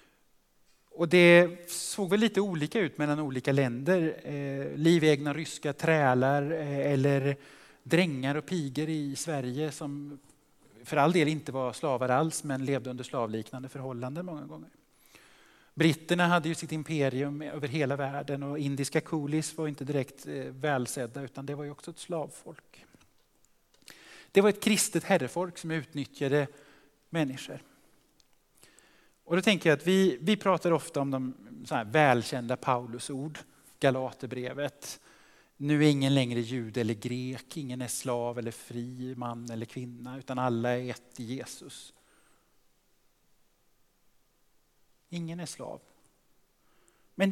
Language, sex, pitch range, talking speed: Swedish, male, 130-160 Hz, 135 wpm